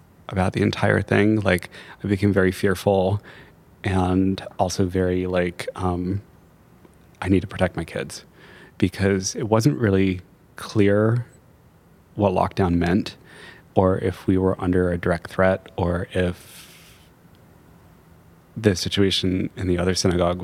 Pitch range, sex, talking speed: 90-100 Hz, male, 130 wpm